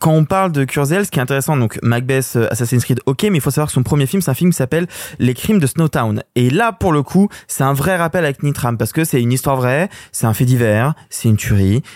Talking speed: 275 wpm